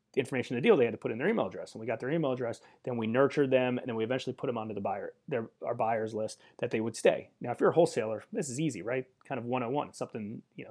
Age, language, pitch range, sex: 30-49, English, 110-135 Hz, male